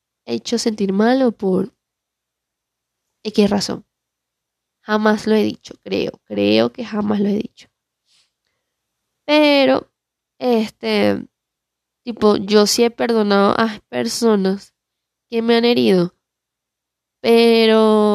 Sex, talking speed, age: female, 105 wpm, 10-29